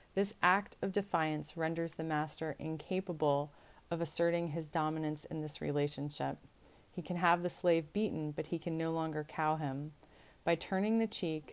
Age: 30-49